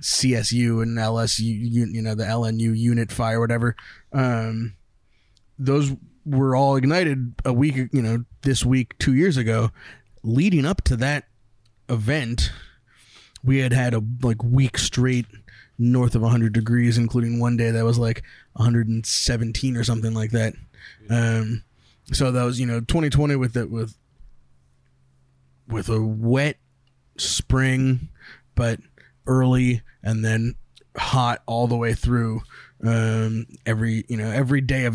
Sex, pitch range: male, 115-130 Hz